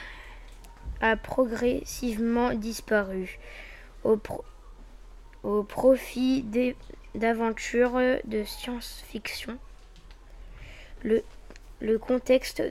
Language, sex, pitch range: French, female, 220-245 Hz